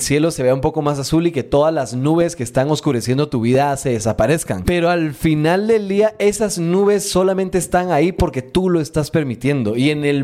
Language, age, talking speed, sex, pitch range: Spanish, 30-49, 215 wpm, male, 130-175 Hz